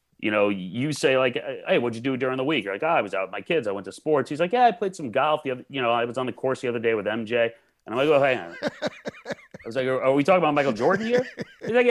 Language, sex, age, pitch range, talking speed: English, male, 30-49, 95-145 Hz, 320 wpm